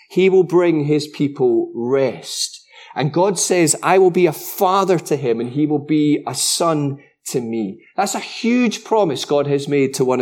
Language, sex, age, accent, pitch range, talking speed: English, male, 30-49, British, 140-195 Hz, 195 wpm